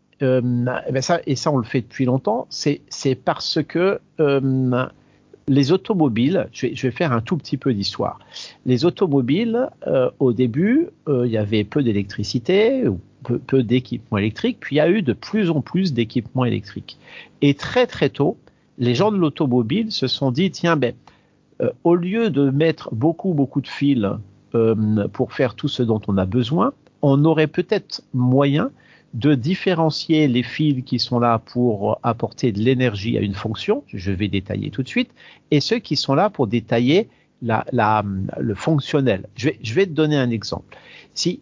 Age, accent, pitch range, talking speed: 50-69, French, 115-160 Hz, 185 wpm